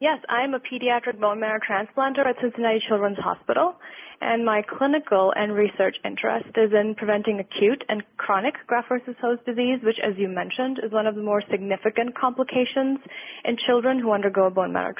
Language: English